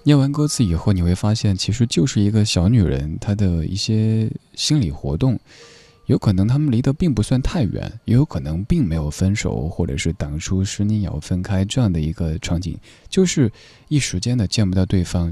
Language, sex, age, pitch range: Chinese, male, 20-39, 90-115 Hz